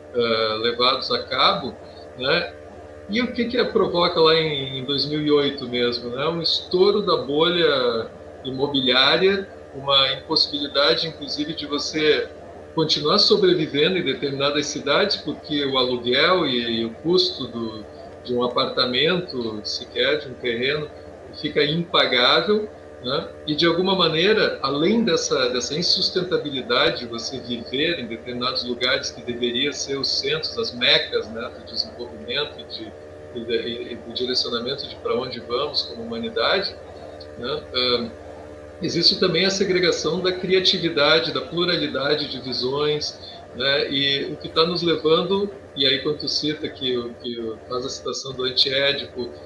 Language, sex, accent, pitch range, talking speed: Portuguese, male, Brazilian, 120-165 Hz, 130 wpm